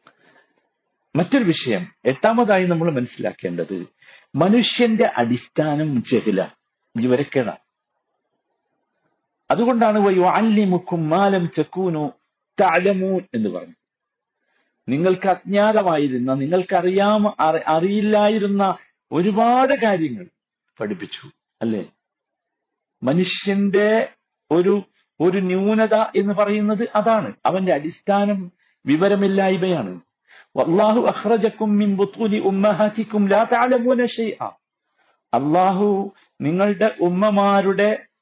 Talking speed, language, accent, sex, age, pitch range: 60 wpm, Malayalam, native, male, 50-69, 185-225 Hz